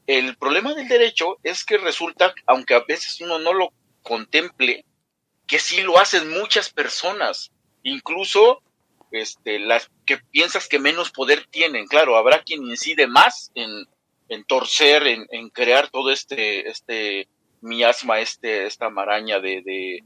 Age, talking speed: 40-59, 145 wpm